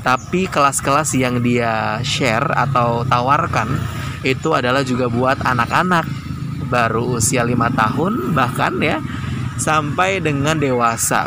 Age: 20-39